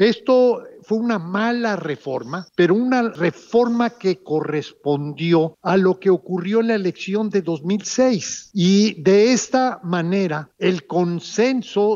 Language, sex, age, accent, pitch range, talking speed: Spanish, male, 50-69, Mexican, 165-220 Hz, 125 wpm